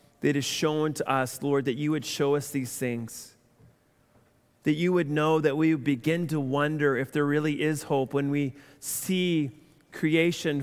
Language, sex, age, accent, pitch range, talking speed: English, male, 40-59, American, 140-165 Hz, 180 wpm